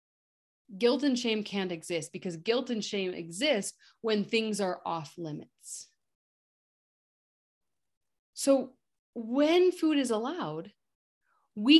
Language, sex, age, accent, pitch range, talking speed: English, female, 30-49, American, 165-225 Hz, 105 wpm